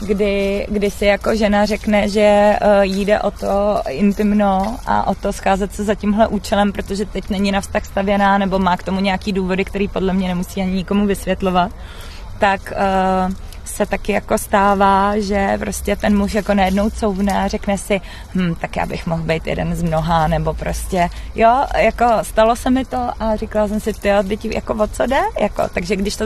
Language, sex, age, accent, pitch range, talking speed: Czech, female, 20-39, native, 195-210 Hz, 195 wpm